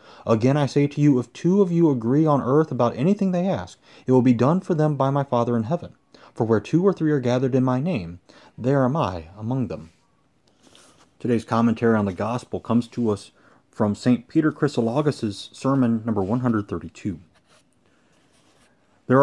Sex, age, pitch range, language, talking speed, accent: male, 30-49, 115-145 Hz, English, 180 wpm, American